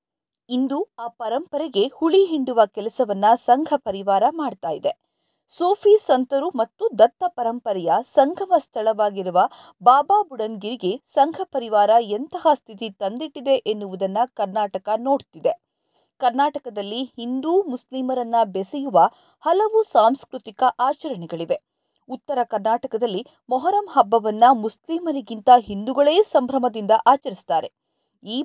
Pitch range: 220-300 Hz